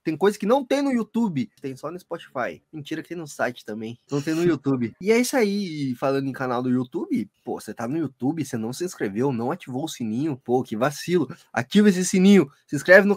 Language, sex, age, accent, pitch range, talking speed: Portuguese, male, 20-39, Brazilian, 140-210 Hz, 235 wpm